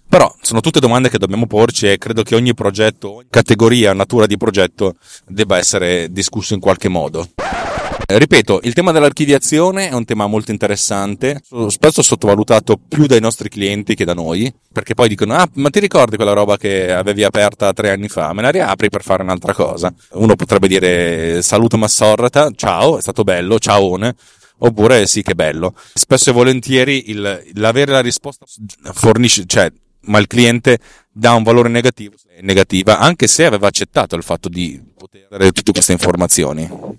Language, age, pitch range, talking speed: Italian, 30-49, 95-120 Hz, 170 wpm